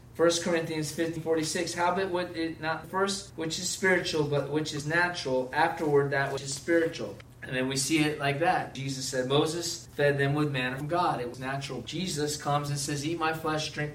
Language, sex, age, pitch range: English, male, 20-39, 140-170 Hz